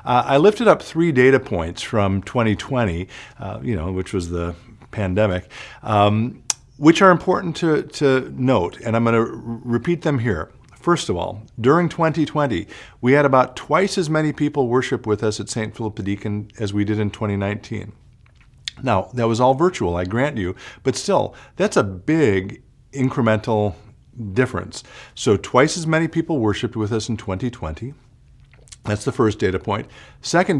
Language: English